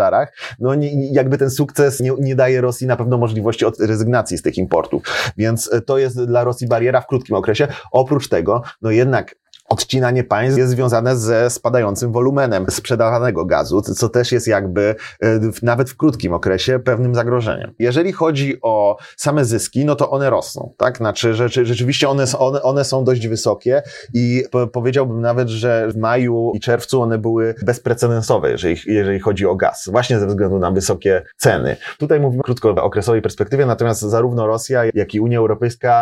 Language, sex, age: Polish, male, 30-49